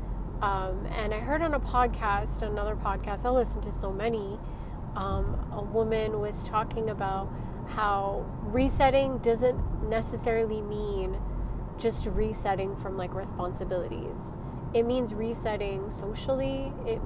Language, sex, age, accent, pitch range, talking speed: English, female, 20-39, American, 185-230 Hz, 125 wpm